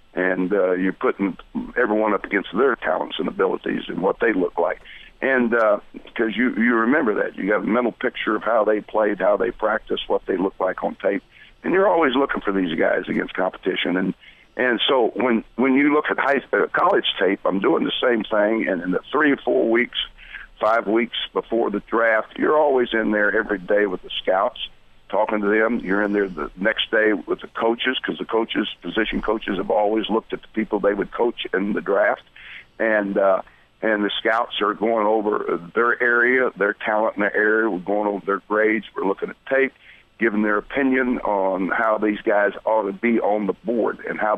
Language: English